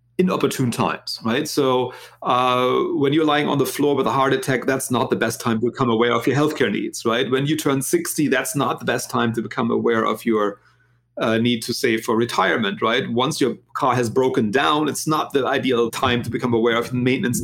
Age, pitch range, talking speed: 40-59, 120-155 Hz, 230 wpm